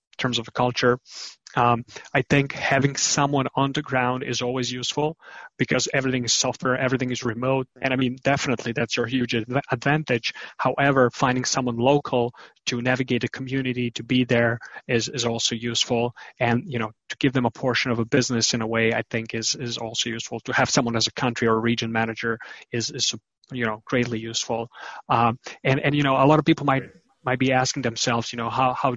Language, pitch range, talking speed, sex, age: English, 120-135 Hz, 205 wpm, male, 30-49